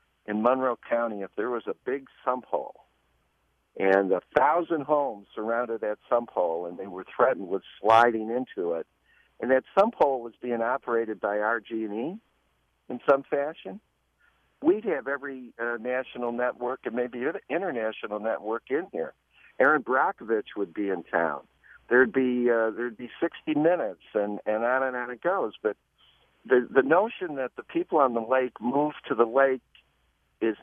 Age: 60-79